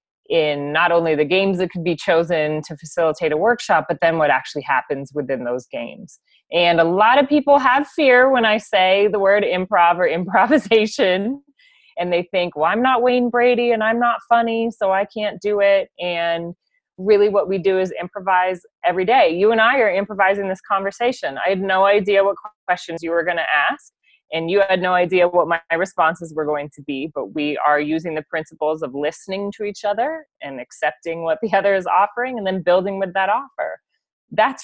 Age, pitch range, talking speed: 30-49, 165-210 Hz, 205 wpm